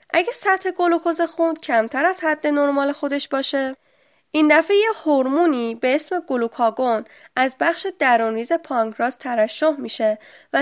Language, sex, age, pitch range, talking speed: Persian, female, 10-29, 235-325 Hz, 130 wpm